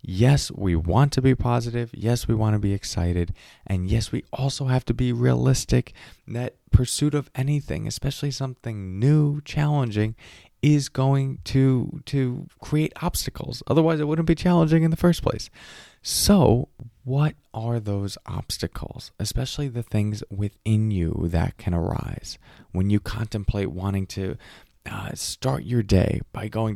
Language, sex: English, male